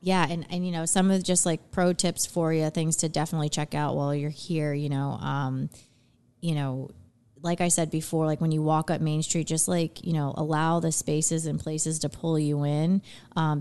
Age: 30-49